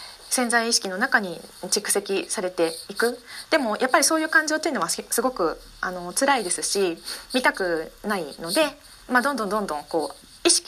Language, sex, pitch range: Japanese, female, 180-290 Hz